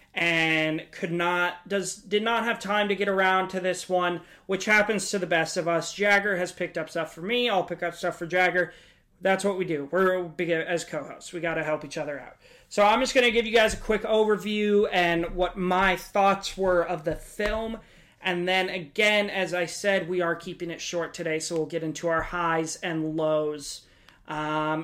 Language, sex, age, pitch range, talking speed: English, male, 30-49, 170-200 Hz, 210 wpm